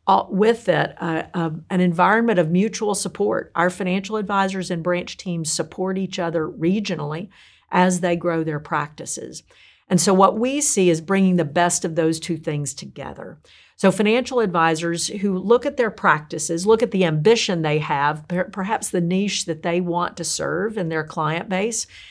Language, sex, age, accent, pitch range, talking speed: English, female, 50-69, American, 165-200 Hz, 180 wpm